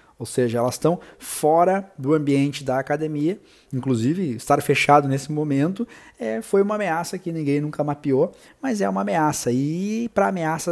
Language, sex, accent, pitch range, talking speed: Portuguese, male, Brazilian, 130-165 Hz, 155 wpm